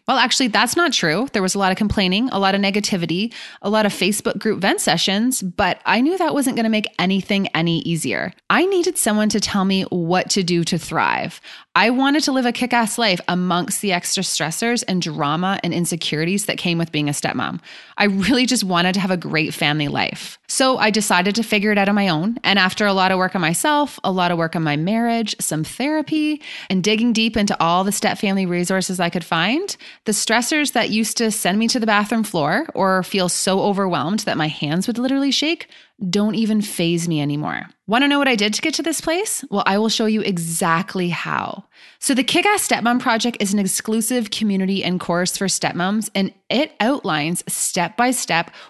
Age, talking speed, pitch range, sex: 20-39, 215 wpm, 180-235 Hz, female